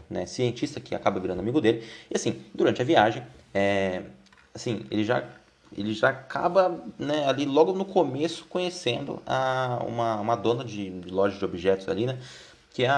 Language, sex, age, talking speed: Portuguese, male, 20-39, 175 wpm